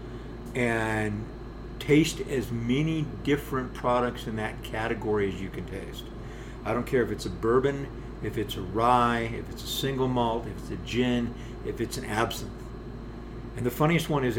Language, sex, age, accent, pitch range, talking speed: English, male, 50-69, American, 115-130 Hz, 175 wpm